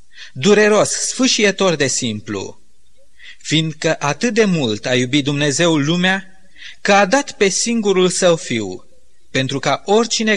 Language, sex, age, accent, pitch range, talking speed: Romanian, male, 30-49, native, 155-210 Hz, 125 wpm